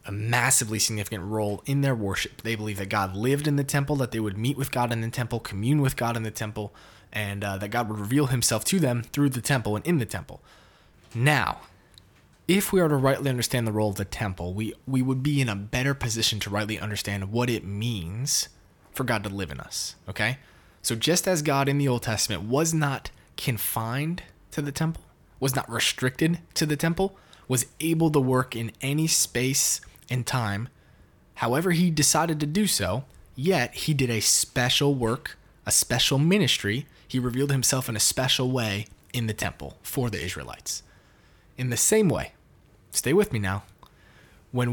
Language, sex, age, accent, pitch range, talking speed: English, male, 20-39, American, 105-140 Hz, 195 wpm